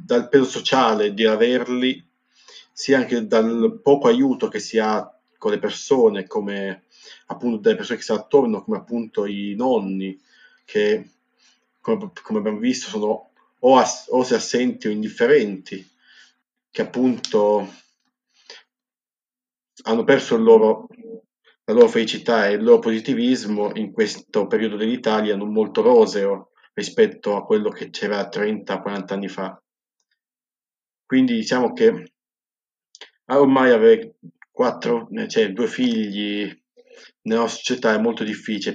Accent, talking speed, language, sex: native, 125 wpm, Italian, male